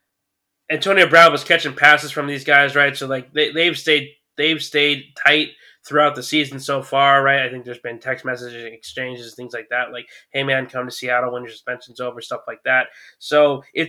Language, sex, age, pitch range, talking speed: English, male, 20-39, 125-160 Hz, 205 wpm